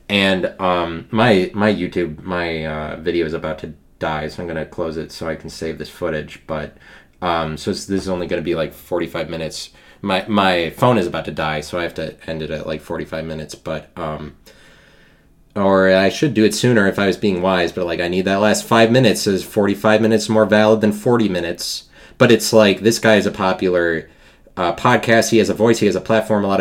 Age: 30-49